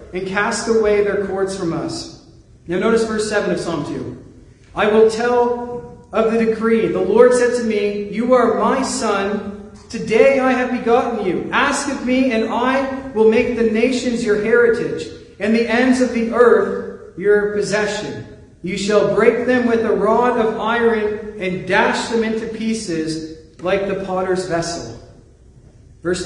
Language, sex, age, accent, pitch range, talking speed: English, male, 40-59, American, 185-230 Hz, 165 wpm